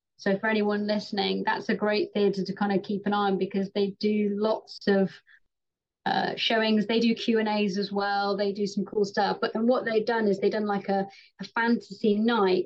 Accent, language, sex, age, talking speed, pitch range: British, English, female, 30-49, 215 wpm, 200-235 Hz